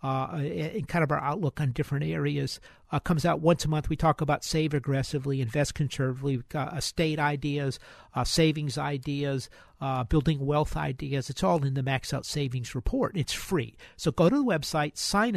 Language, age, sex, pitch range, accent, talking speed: English, 50-69, male, 135-170 Hz, American, 185 wpm